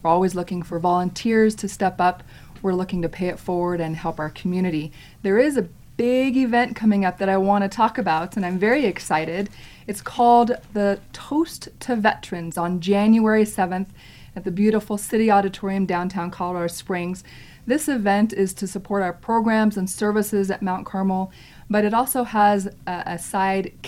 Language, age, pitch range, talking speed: English, 20-39, 185-220 Hz, 180 wpm